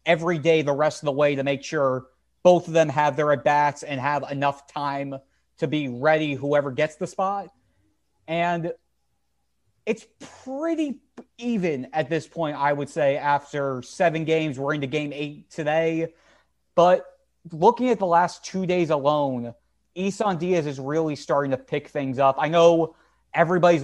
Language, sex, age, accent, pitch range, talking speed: English, male, 30-49, American, 150-175 Hz, 165 wpm